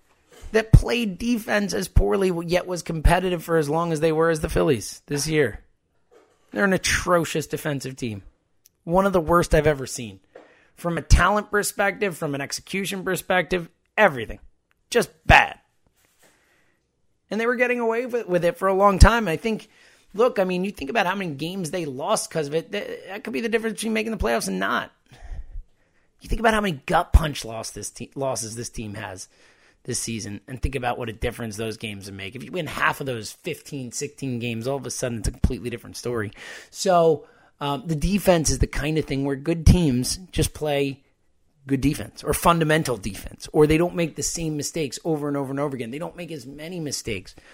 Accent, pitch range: American, 125-175 Hz